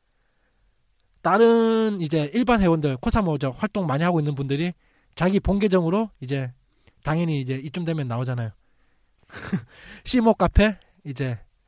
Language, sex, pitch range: Korean, male, 135-185 Hz